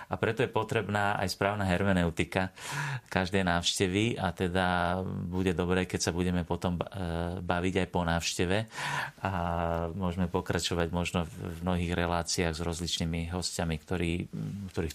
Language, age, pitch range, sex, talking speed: Slovak, 40-59, 85-100 Hz, male, 135 wpm